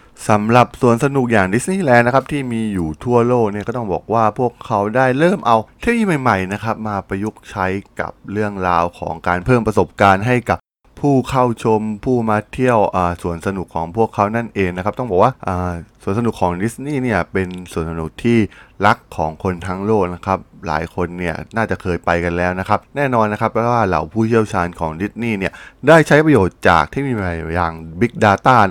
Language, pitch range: Thai, 90-120 Hz